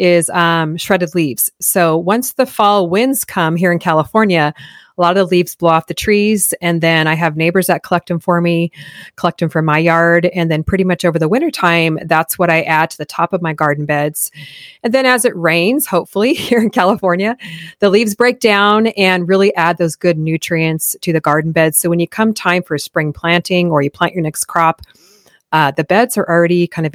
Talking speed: 220 wpm